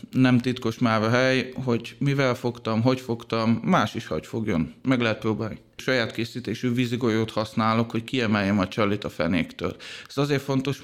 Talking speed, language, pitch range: 165 wpm, Hungarian, 115-135 Hz